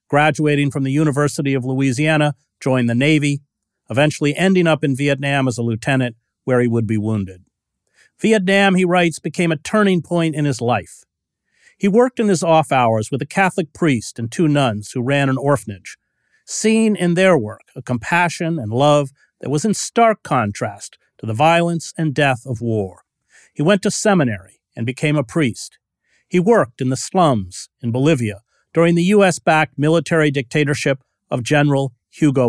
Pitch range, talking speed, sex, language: 125-170 Hz, 170 wpm, male, English